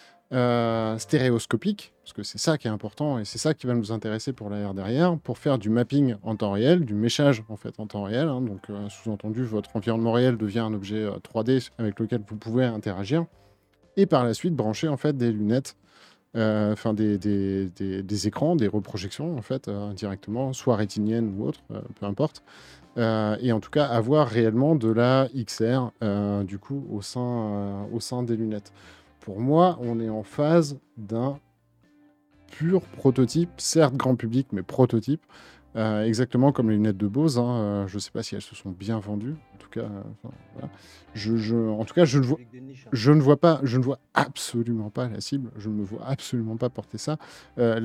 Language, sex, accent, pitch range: French, male, French, 105-135 Hz